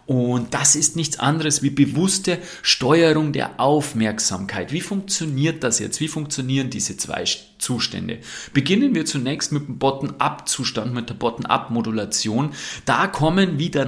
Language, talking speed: German, 155 wpm